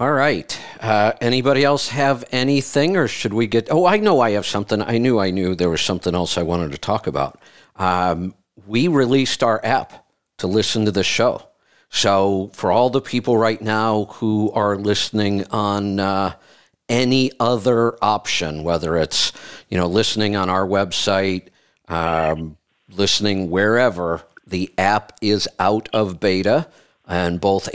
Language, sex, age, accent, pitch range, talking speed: English, male, 50-69, American, 95-110 Hz, 160 wpm